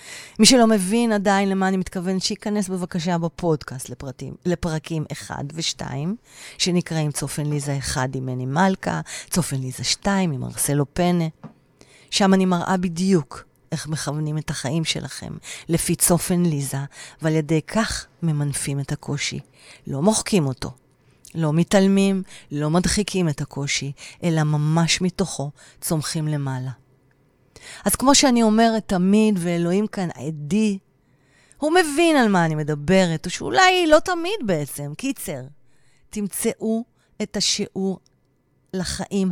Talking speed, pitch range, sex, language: 125 wpm, 140-195 Hz, female, Hebrew